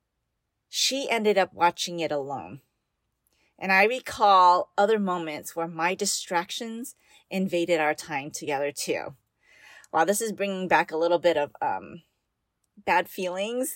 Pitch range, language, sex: 170-230 Hz, English, female